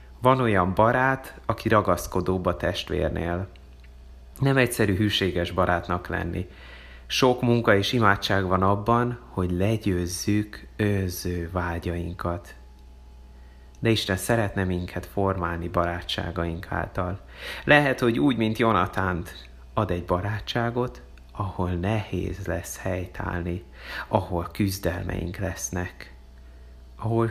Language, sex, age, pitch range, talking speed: Hungarian, male, 30-49, 85-105 Hz, 100 wpm